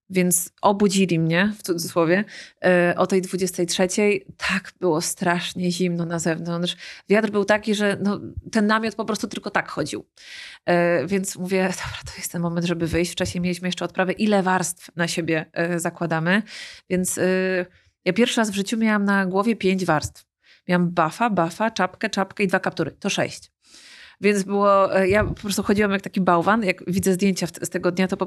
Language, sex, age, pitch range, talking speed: Polish, female, 30-49, 175-195 Hz, 175 wpm